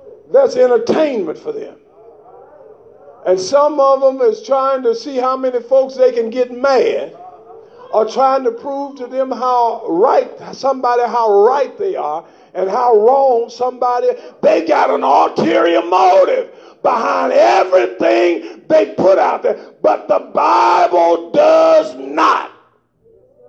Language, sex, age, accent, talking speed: English, male, 50-69, American, 135 wpm